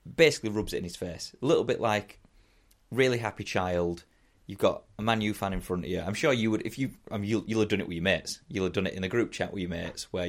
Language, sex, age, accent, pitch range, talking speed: English, male, 30-49, British, 90-115 Hz, 295 wpm